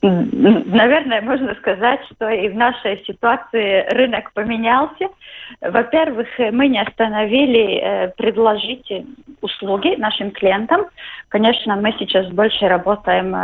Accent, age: native, 20-39